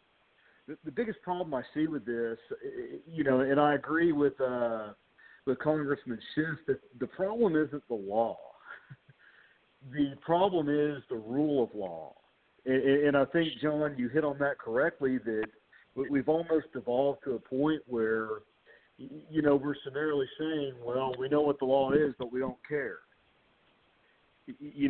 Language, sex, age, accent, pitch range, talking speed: English, male, 50-69, American, 130-160 Hz, 155 wpm